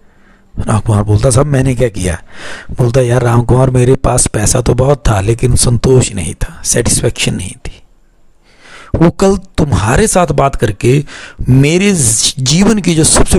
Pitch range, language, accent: 110-145 Hz, Hindi, native